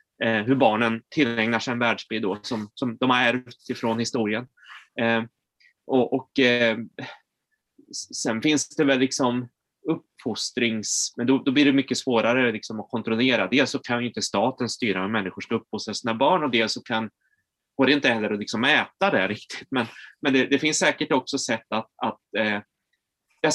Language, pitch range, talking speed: Swedish, 110-135 Hz, 185 wpm